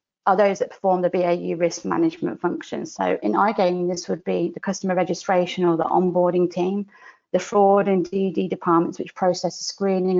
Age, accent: 30-49, British